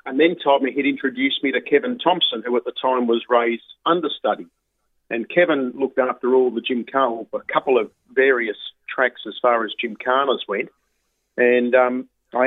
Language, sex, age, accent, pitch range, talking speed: English, male, 40-59, Australian, 115-155 Hz, 185 wpm